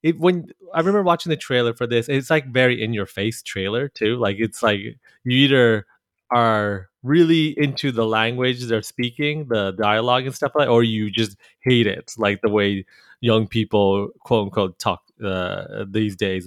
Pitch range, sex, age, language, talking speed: 105-130 Hz, male, 20-39, English, 180 wpm